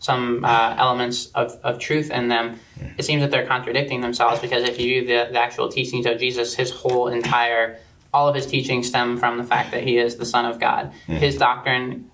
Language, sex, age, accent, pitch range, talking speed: English, male, 20-39, American, 120-130 Hz, 215 wpm